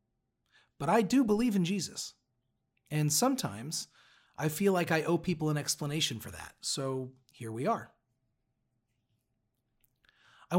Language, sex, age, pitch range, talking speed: English, male, 40-59, 120-170 Hz, 130 wpm